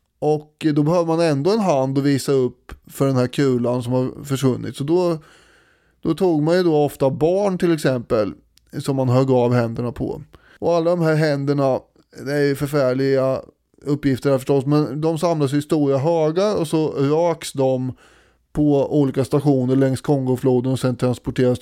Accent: native